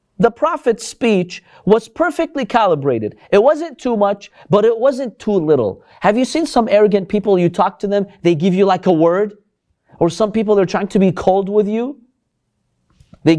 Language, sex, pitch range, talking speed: English, male, 170-235 Hz, 190 wpm